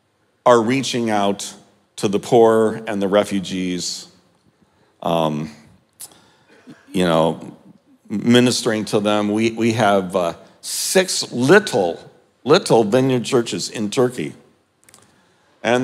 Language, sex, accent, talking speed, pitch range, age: English, male, American, 100 wpm, 95-125 Hz, 50-69